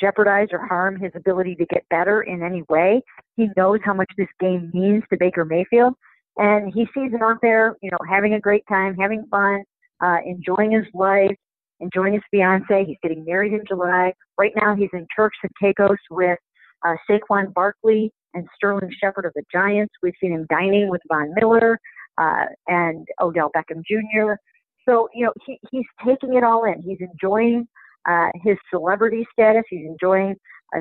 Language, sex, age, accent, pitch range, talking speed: English, female, 50-69, American, 180-215 Hz, 185 wpm